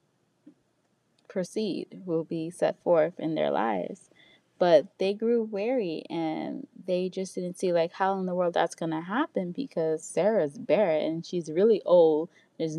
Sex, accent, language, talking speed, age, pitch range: female, American, English, 155 wpm, 20-39, 165-195 Hz